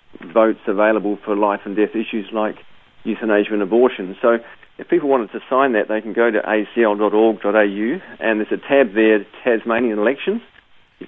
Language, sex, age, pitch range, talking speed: English, male, 40-59, 105-115 Hz, 170 wpm